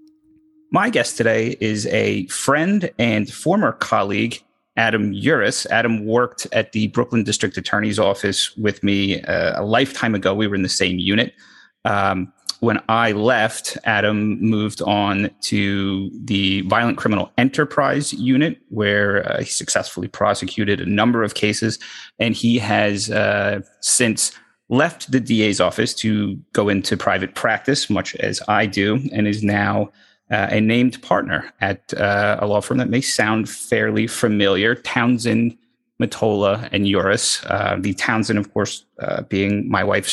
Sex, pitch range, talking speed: male, 100-125 Hz, 150 wpm